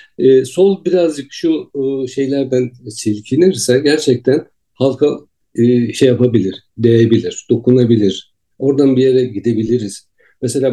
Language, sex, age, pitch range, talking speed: Turkish, male, 60-79, 110-145 Hz, 95 wpm